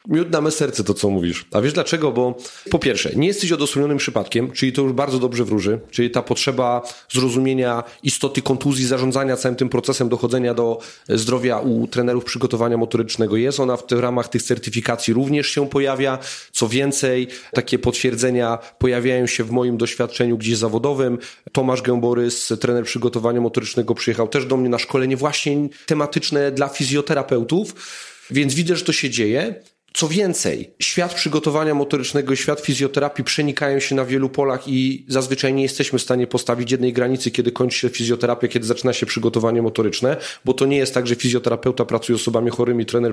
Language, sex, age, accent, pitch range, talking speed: Polish, male, 30-49, native, 120-135 Hz, 175 wpm